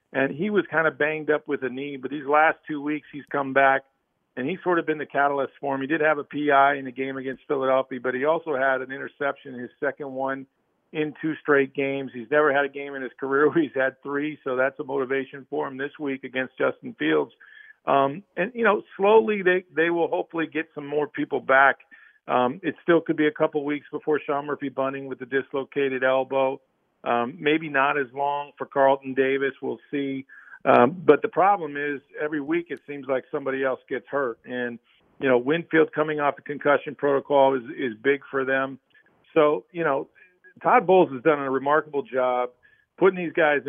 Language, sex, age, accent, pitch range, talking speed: English, male, 50-69, American, 135-155 Hz, 210 wpm